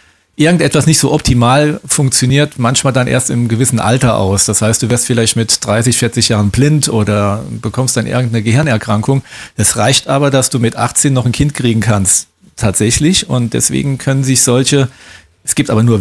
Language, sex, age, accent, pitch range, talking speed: German, male, 40-59, German, 110-135 Hz, 185 wpm